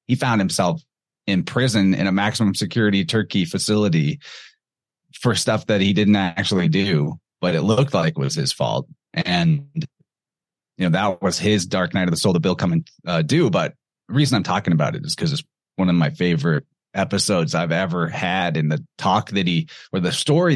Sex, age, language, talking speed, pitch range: male, 30-49, English, 200 wpm, 95-125 Hz